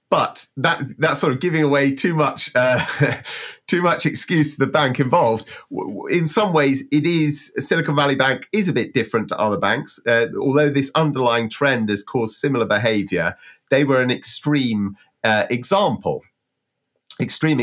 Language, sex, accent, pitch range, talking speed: English, male, British, 105-145 Hz, 165 wpm